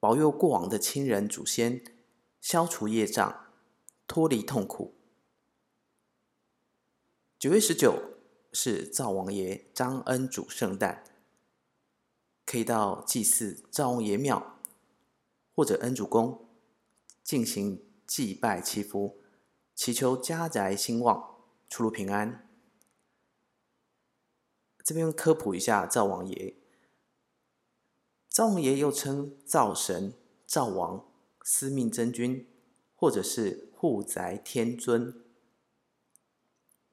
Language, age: Chinese, 30-49